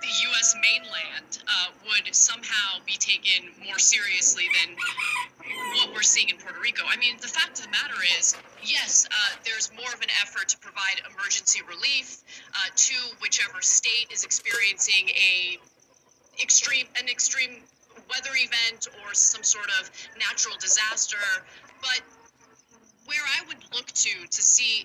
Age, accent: 30-49, American